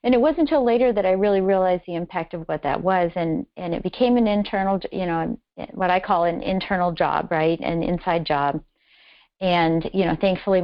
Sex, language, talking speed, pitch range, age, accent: female, English, 210 wpm, 165-195 Hz, 40-59, American